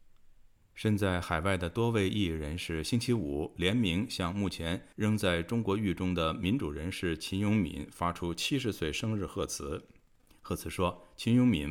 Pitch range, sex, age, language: 80-105 Hz, male, 50-69, Chinese